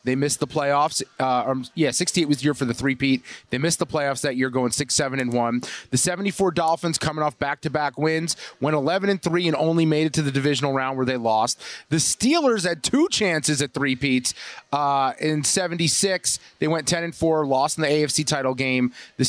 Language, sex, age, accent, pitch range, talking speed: English, male, 30-49, American, 140-175 Hz, 185 wpm